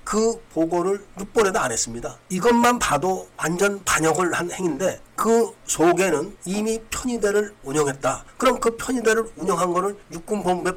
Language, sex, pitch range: Korean, male, 160-205 Hz